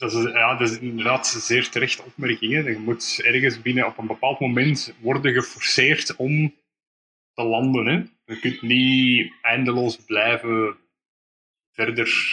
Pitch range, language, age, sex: 115-140 Hz, Dutch, 20-39, male